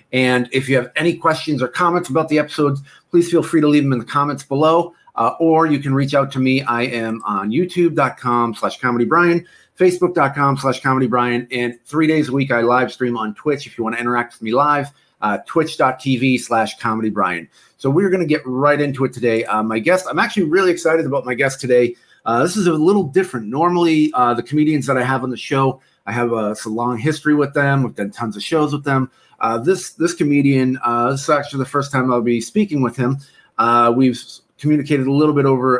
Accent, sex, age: American, male, 40-59